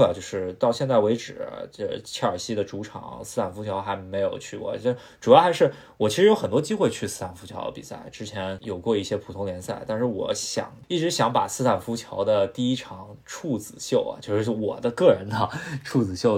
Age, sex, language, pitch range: 20-39, male, Chinese, 100-125 Hz